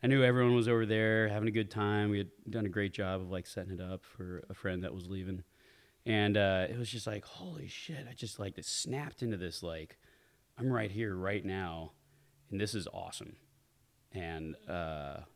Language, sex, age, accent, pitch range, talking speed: English, male, 20-39, American, 90-110 Hz, 205 wpm